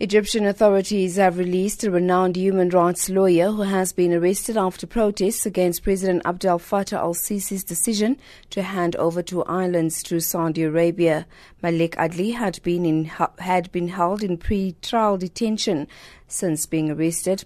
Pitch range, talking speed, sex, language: 170-195 Hz, 150 wpm, female, English